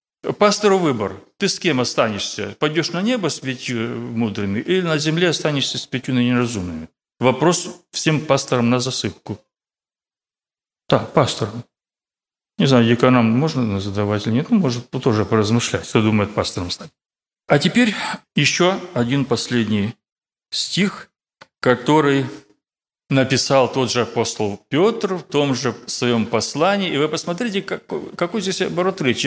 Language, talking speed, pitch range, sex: Russian, 135 wpm, 120-180 Hz, male